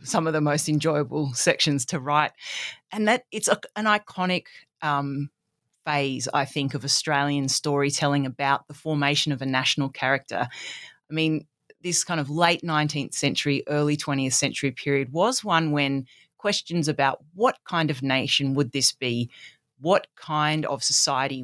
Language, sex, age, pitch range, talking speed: English, female, 30-49, 140-170 Hz, 155 wpm